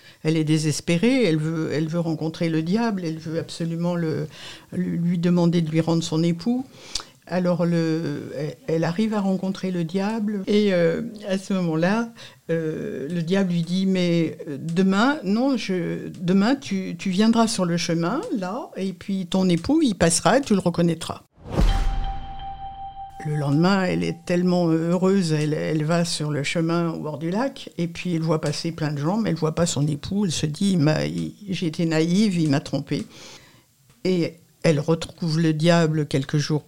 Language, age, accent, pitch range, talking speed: French, 60-79, French, 160-195 Hz, 185 wpm